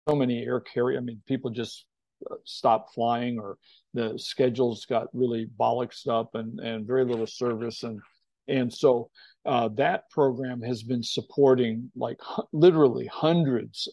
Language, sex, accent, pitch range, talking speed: English, male, American, 120-145 Hz, 140 wpm